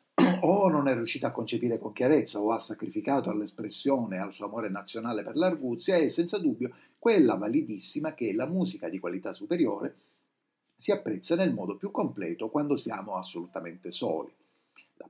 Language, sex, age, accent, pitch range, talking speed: Italian, male, 50-69, native, 120-185 Hz, 160 wpm